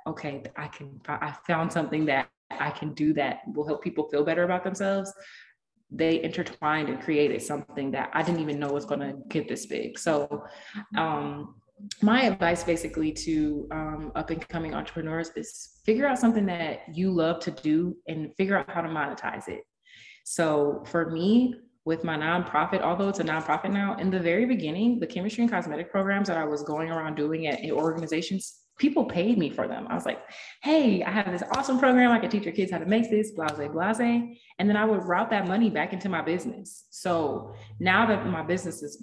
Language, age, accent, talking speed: English, 20-39, American, 200 wpm